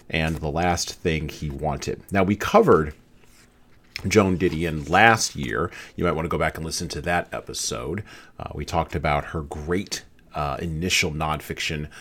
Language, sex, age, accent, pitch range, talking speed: English, male, 40-59, American, 75-90 Hz, 165 wpm